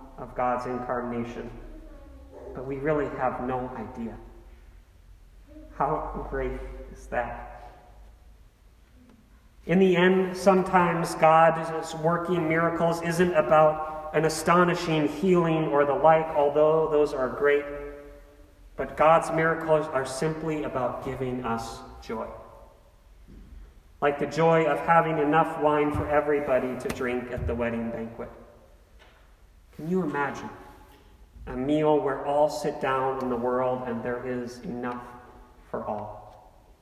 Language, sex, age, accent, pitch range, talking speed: English, male, 40-59, American, 120-155 Hz, 120 wpm